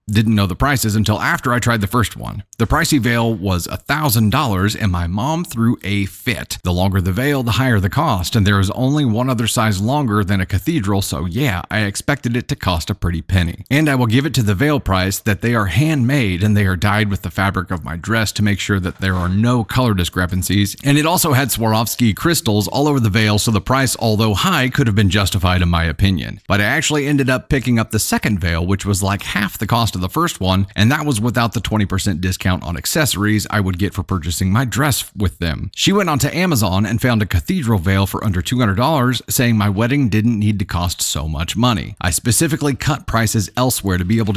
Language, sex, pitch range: English, male, 95-125 Hz